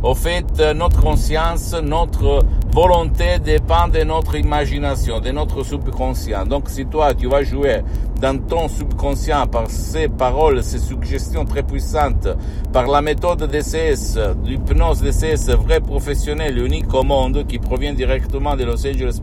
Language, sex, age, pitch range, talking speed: Italian, male, 60-79, 75-115 Hz, 145 wpm